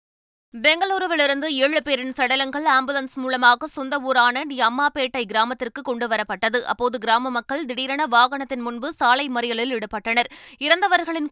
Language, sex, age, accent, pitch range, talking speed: Tamil, female, 20-39, native, 240-285 Hz, 115 wpm